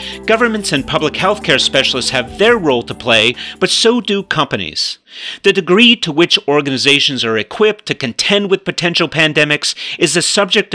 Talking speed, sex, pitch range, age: 170 wpm, male, 125-185 Hz, 40-59